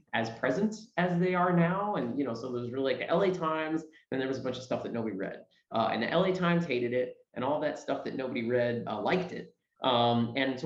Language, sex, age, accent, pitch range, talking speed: English, male, 30-49, American, 125-180 Hz, 265 wpm